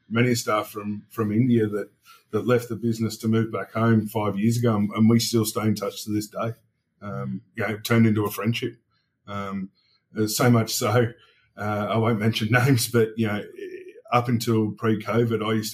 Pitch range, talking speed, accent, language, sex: 105-120 Hz, 195 wpm, Australian, English, male